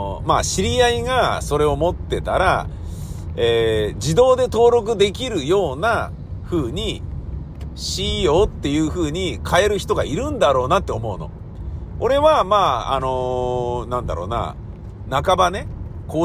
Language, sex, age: Japanese, male, 50-69